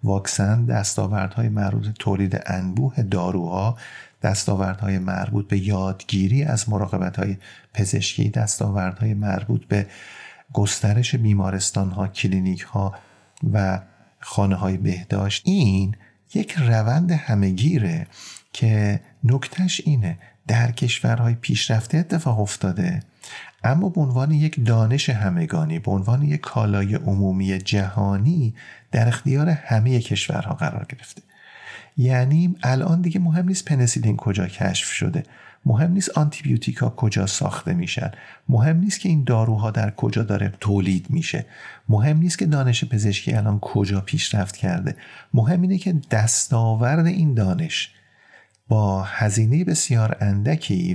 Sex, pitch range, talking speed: male, 100-140 Hz, 115 wpm